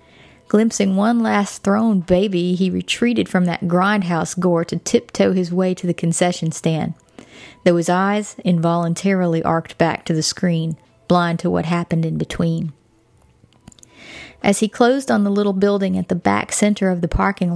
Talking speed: 165 wpm